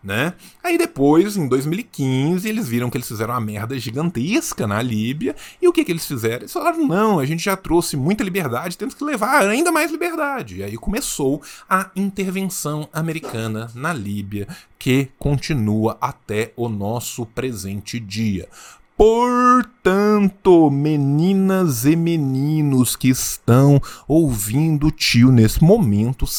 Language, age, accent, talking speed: Portuguese, 20-39, Brazilian, 140 wpm